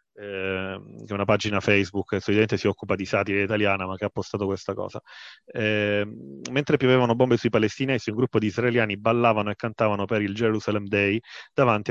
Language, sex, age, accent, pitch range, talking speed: Italian, male, 30-49, native, 100-115 Hz, 185 wpm